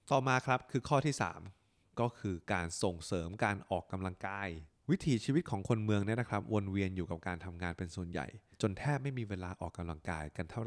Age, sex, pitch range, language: 20-39, male, 90-115 Hz, Thai